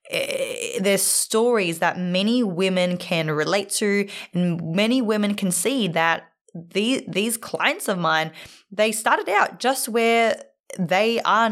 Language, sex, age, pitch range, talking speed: English, female, 20-39, 175-220 Hz, 130 wpm